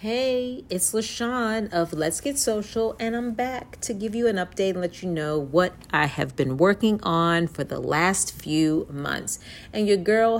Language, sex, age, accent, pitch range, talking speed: English, female, 40-59, American, 150-205 Hz, 190 wpm